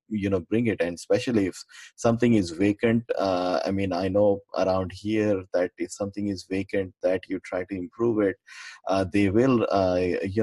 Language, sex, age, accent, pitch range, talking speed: English, male, 20-39, Indian, 90-105 Hz, 190 wpm